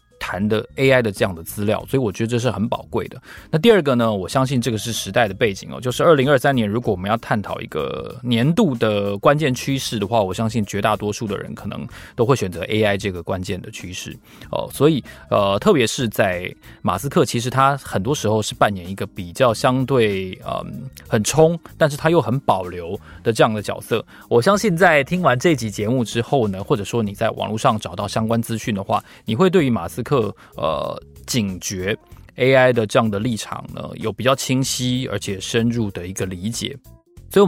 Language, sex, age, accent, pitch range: Chinese, male, 20-39, native, 105-130 Hz